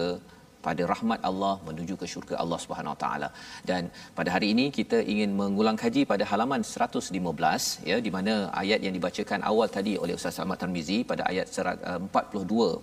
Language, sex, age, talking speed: Malayalam, male, 40-59, 165 wpm